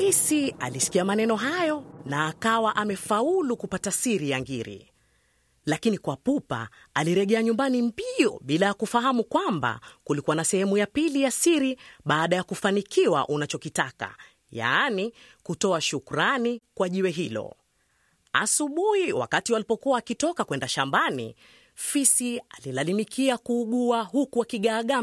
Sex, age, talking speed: female, 30-49, 115 wpm